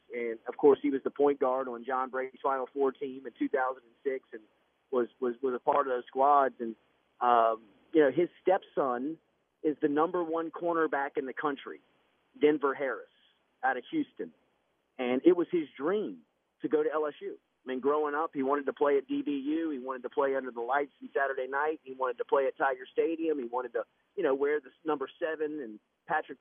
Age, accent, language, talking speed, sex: 40-59, American, English, 205 wpm, male